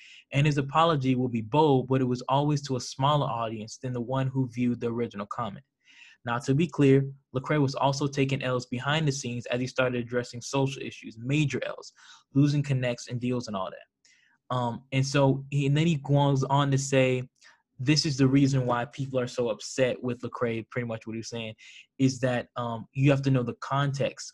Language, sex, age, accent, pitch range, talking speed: English, male, 10-29, American, 125-140 Hz, 210 wpm